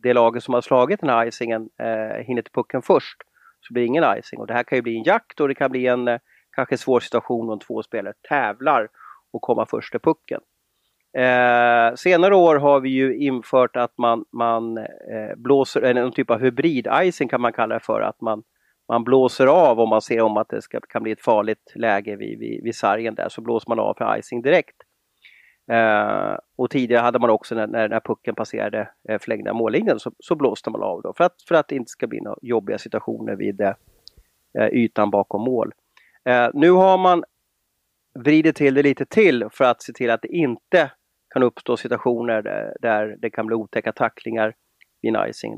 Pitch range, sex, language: 110-130 Hz, male, Swedish